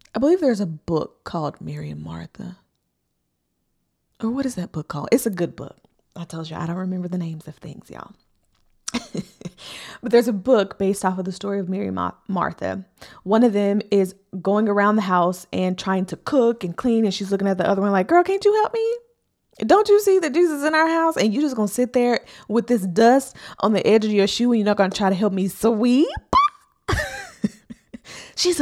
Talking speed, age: 220 wpm, 20-39